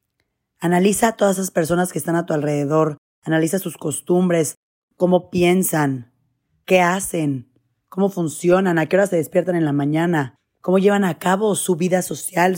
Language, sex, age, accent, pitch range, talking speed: Spanish, female, 30-49, Mexican, 150-185 Hz, 160 wpm